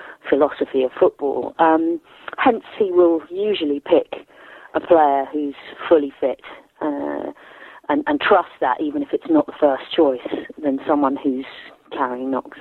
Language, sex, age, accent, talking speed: English, female, 40-59, British, 150 wpm